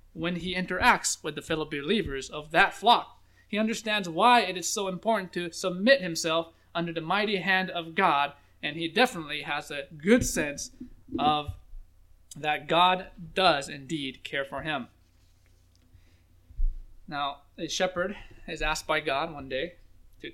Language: English